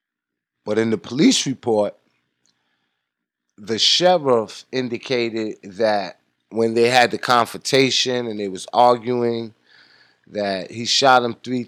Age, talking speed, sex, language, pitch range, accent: 30-49, 120 wpm, male, English, 90-130 Hz, American